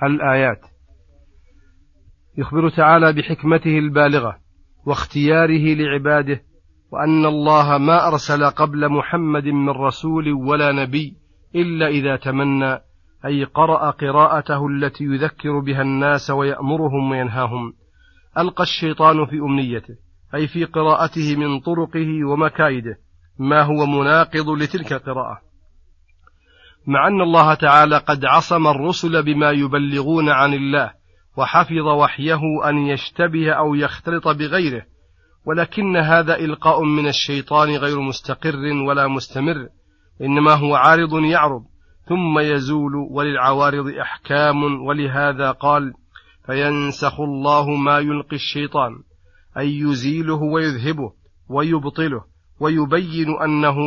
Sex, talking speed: male, 100 wpm